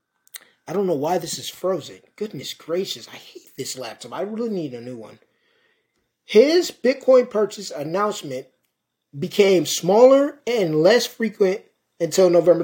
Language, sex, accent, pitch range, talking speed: English, male, American, 165-230 Hz, 140 wpm